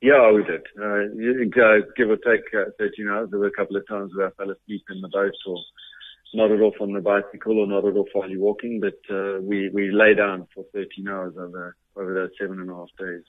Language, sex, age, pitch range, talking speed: English, male, 40-59, 95-110 Hz, 240 wpm